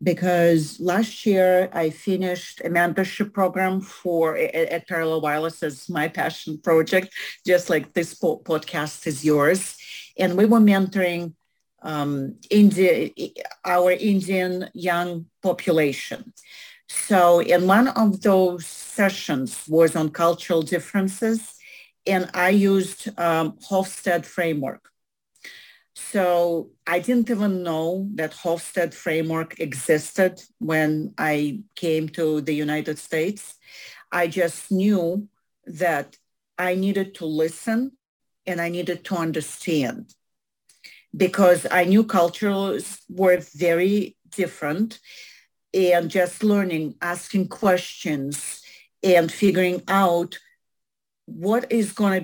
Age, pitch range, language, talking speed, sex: 50-69, 165-195 Hz, English, 115 wpm, female